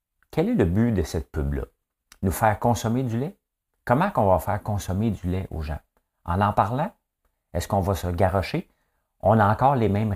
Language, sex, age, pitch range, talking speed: French, male, 50-69, 80-110 Hz, 200 wpm